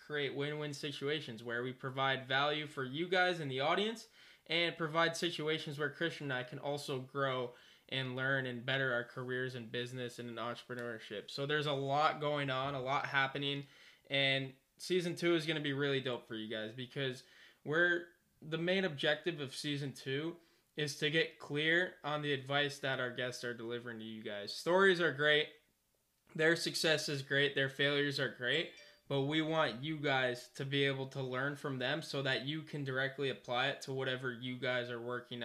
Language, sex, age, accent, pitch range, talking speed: English, male, 20-39, American, 130-150 Hz, 190 wpm